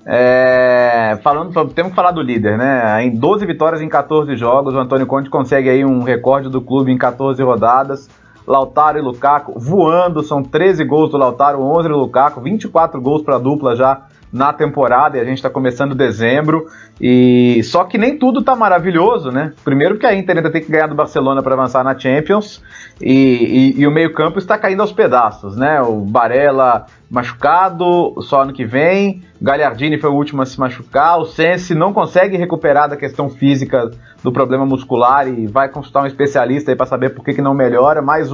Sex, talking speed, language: male, 190 wpm, Portuguese